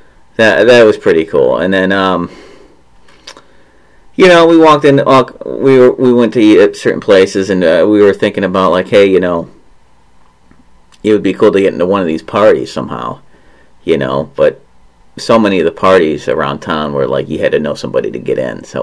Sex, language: male, English